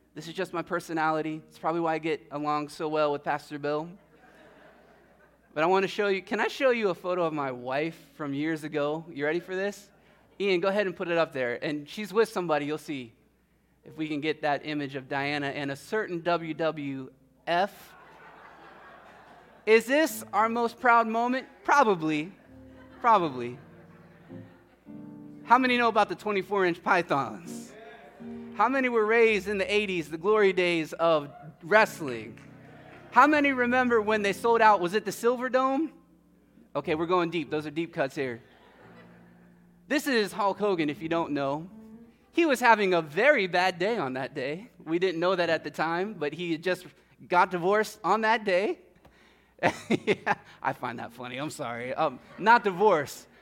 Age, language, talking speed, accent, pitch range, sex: 20-39, English, 175 wpm, American, 150-210 Hz, male